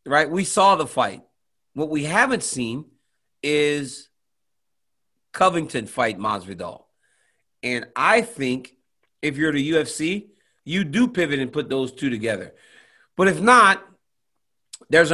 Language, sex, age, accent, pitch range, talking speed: English, male, 40-59, American, 140-190 Hz, 125 wpm